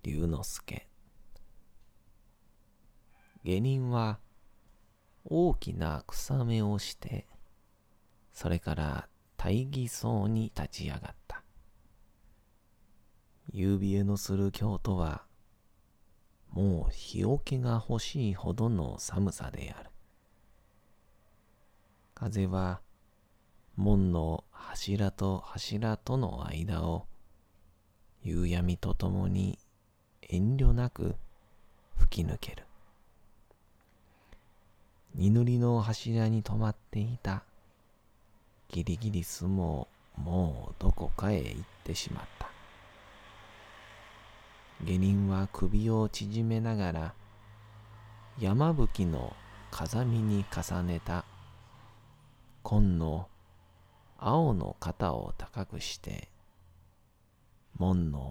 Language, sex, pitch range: Japanese, male, 90-110 Hz